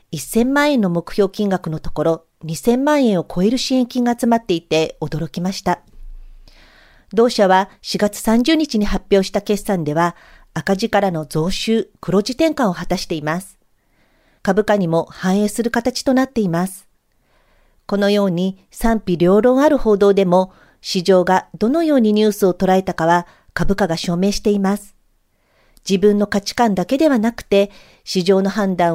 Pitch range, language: 180-230 Hz, Japanese